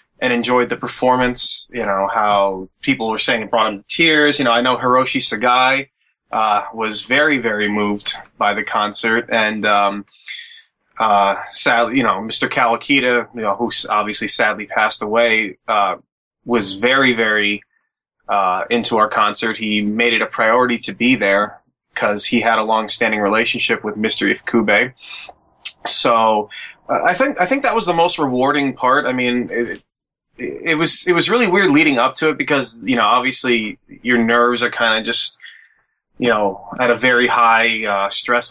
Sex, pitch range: male, 110-130 Hz